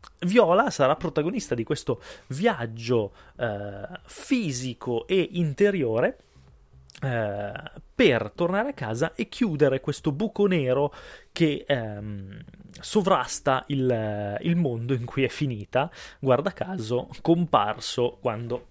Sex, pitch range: male, 120-155 Hz